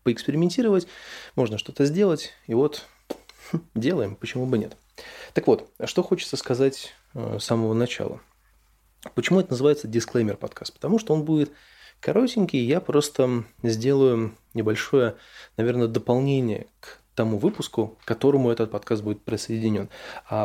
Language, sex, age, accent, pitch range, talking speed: Russian, male, 20-39, native, 110-145 Hz, 130 wpm